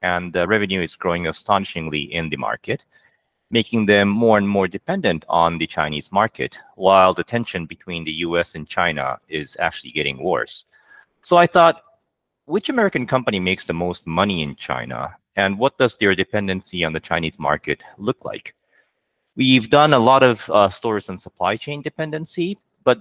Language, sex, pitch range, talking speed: English, male, 85-115 Hz, 170 wpm